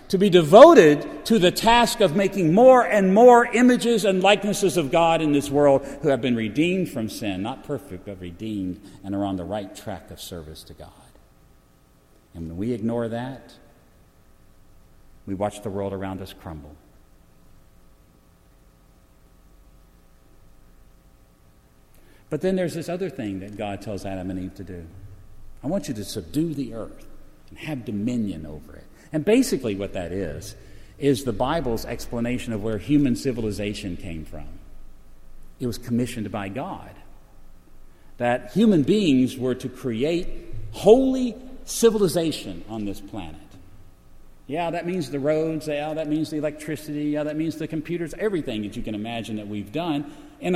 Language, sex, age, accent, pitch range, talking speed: English, male, 50-69, American, 95-160 Hz, 155 wpm